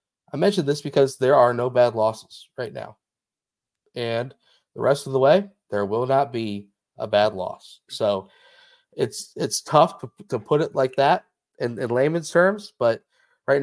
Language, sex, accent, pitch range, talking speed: English, male, American, 110-150 Hz, 170 wpm